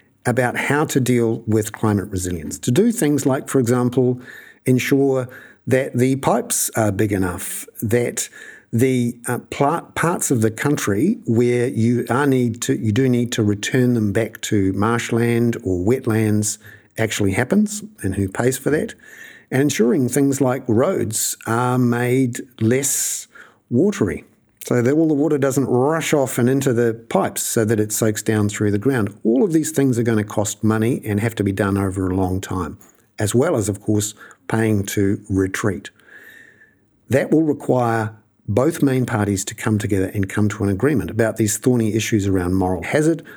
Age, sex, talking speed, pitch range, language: 50-69, male, 170 wpm, 105-130 Hz, English